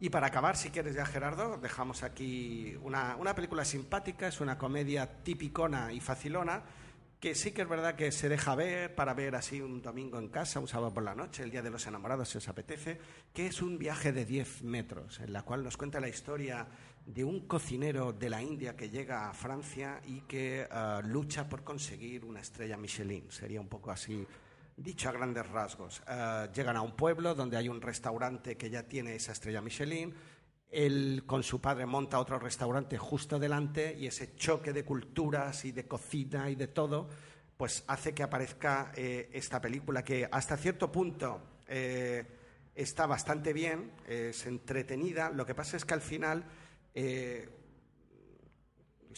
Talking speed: 185 wpm